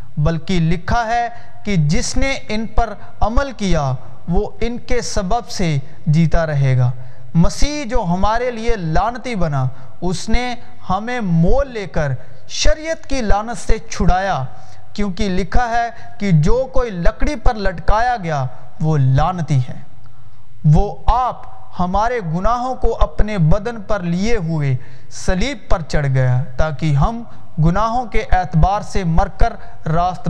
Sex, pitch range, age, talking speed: male, 130-200 Hz, 40-59, 140 wpm